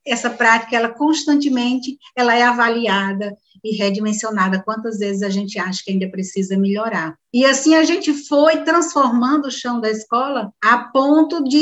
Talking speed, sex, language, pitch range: 160 wpm, female, Portuguese, 225-285 Hz